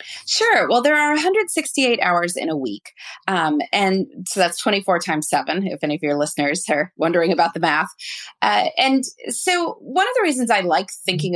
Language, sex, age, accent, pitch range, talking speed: English, female, 30-49, American, 165-245 Hz, 190 wpm